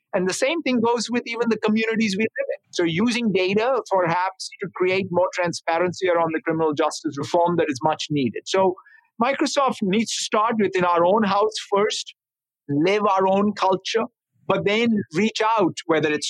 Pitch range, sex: 160-215 Hz, male